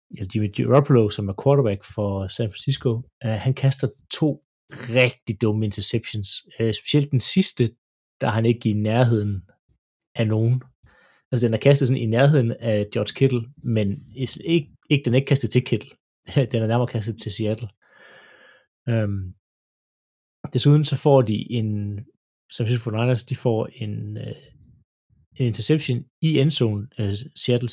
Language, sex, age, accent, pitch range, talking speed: Danish, male, 30-49, native, 110-135 Hz, 155 wpm